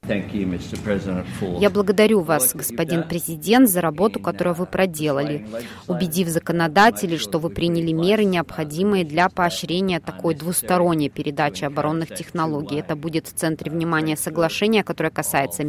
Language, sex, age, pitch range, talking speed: Russian, female, 20-39, 160-195 Hz, 120 wpm